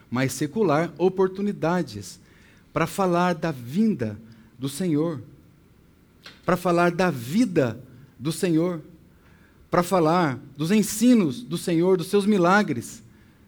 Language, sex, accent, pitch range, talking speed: Portuguese, male, Brazilian, 125-165 Hz, 105 wpm